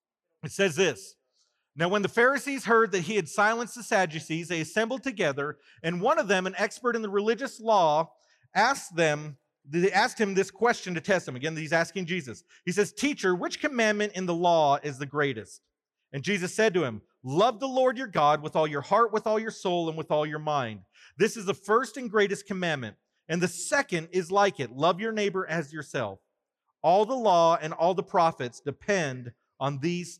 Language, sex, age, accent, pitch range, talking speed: English, male, 40-59, American, 155-205 Hz, 205 wpm